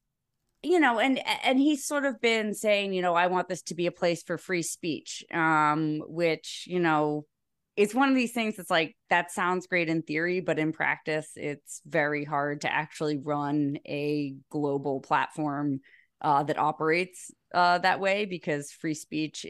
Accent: American